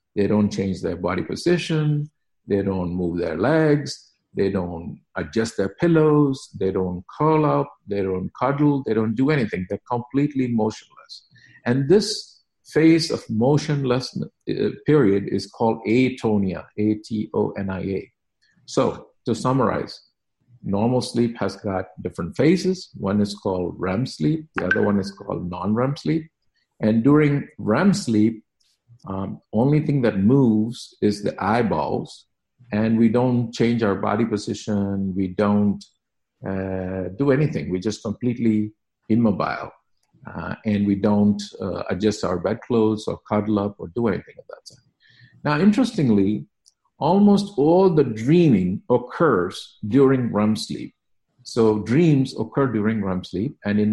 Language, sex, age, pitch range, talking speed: English, male, 50-69, 100-140 Hz, 140 wpm